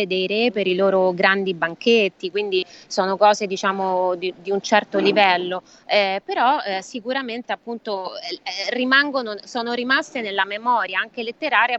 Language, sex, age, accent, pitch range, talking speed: Italian, female, 20-39, native, 190-225 Hz, 145 wpm